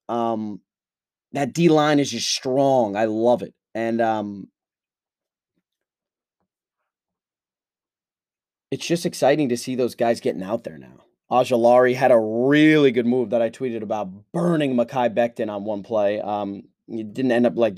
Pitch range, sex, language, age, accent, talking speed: 115-140 Hz, male, English, 30-49, American, 150 wpm